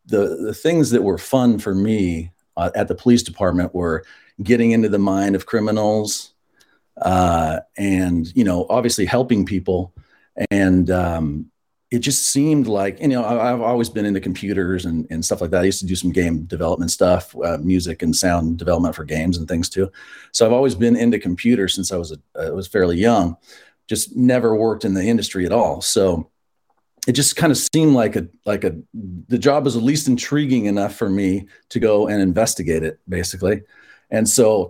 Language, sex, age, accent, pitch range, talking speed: English, male, 40-59, American, 90-115 Hz, 200 wpm